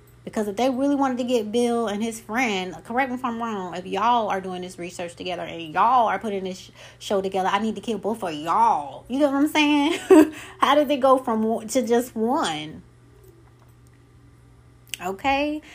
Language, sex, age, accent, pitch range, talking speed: English, female, 20-39, American, 175-250 Hz, 195 wpm